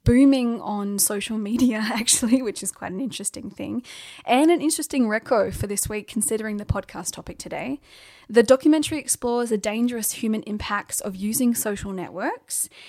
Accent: Australian